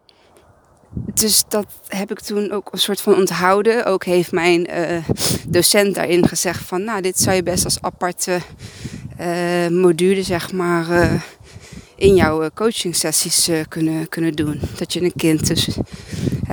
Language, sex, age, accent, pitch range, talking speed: Dutch, female, 20-39, Dutch, 170-200 Hz, 160 wpm